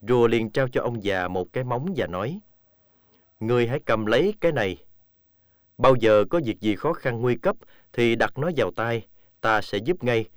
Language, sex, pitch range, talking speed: Vietnamese, male, 100-130 Hz, 205 wpm